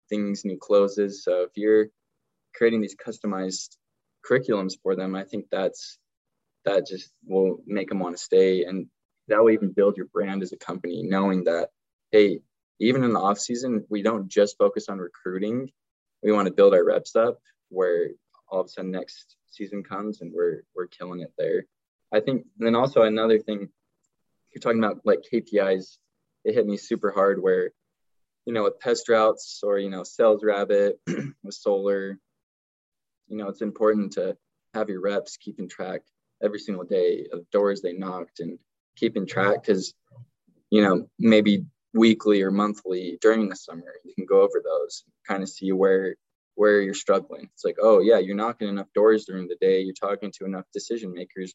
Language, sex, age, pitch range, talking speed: English, male, 20-39, 95-150 Hz, 180 wpm